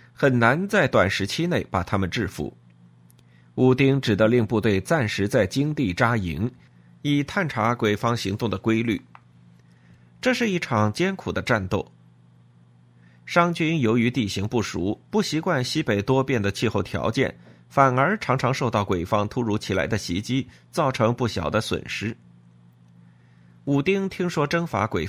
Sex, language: male, Chinese